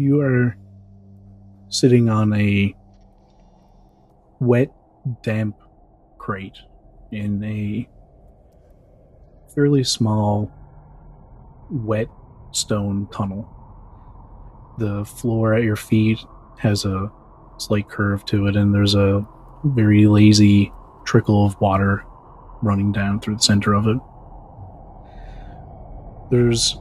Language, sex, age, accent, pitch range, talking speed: English, male, 30-49, American, 100-115 Hz, 95 wpm